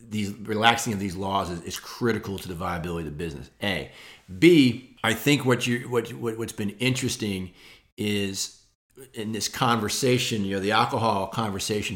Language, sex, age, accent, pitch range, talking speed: English, male, 40-59, American, 100-120 Hz, 165 wpm